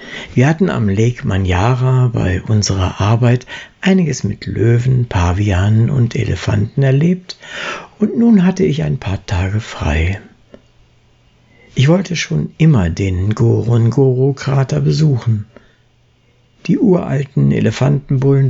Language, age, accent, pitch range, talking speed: German, 60-79, German, 105-140 Hz, 105 wpm